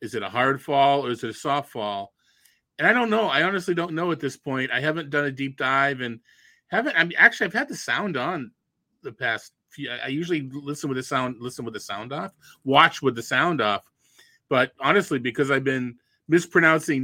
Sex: male